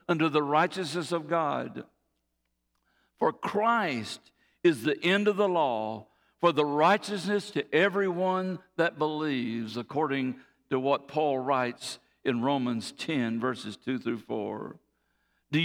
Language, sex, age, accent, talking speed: English, male, 60-79, American, 125 wpm